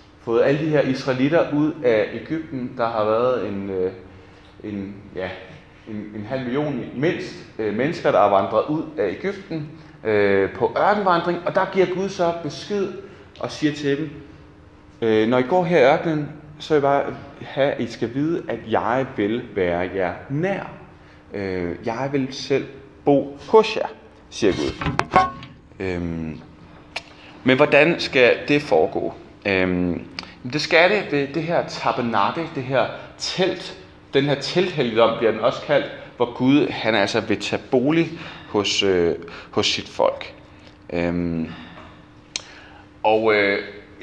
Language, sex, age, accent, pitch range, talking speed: Danish, male, 30-49, native, 100-150 Hz, 145 wpm